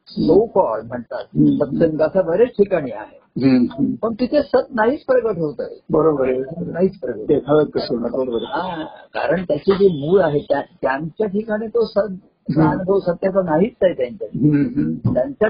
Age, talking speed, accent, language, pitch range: 50-69, 115 wpm, native, Marathi, 160-250 Hz